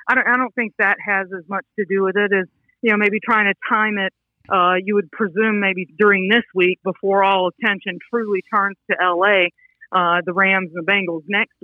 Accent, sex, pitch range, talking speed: American, female, 190-230 Hz, 220 wpm